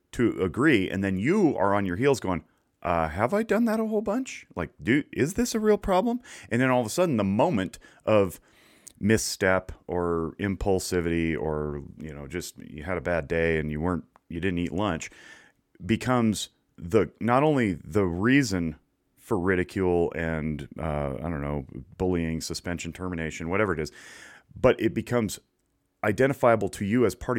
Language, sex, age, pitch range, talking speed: English, male, 30-49, 85-110 Hz, 175 wpm